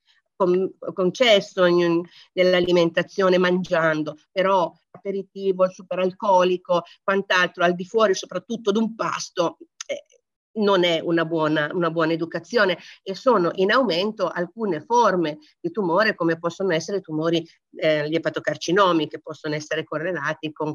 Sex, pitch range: female, 175-210 Hz